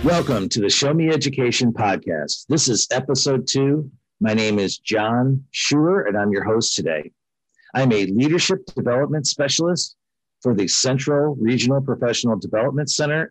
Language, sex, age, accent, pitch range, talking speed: English, male, 50-69, American, 110-145 Hz, 150 wpm